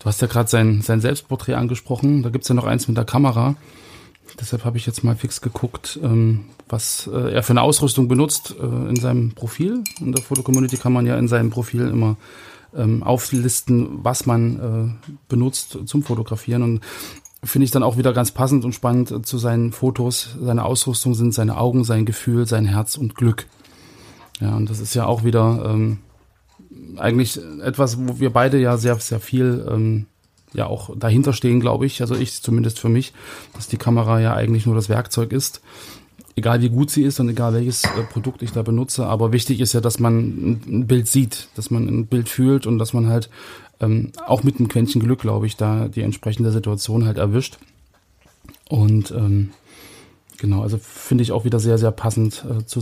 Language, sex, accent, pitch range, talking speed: German, male, German, 110-125 Hz, 190 wpm